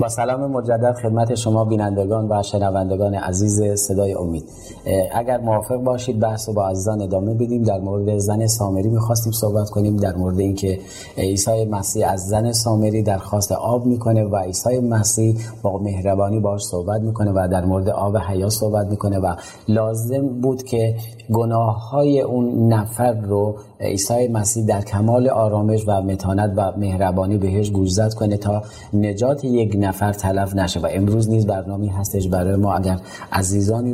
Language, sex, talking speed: Persian, male, 160 wpm